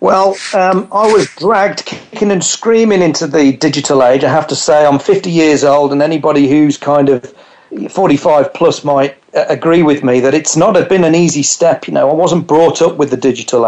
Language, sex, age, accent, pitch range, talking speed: English, male, 40-59, British, 135-165 Hz, 205 wpm